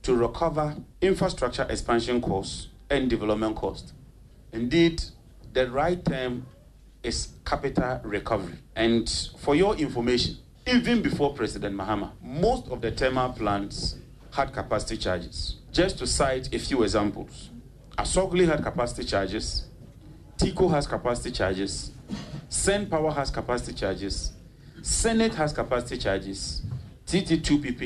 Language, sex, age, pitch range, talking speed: English, male, 40-59, 105-145 Hz, 120 wpm